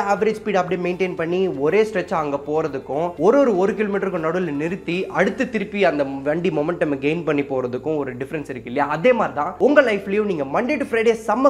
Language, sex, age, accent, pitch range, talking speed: English, male, 20-39, Indian, 155-225 Hz, 120 wpm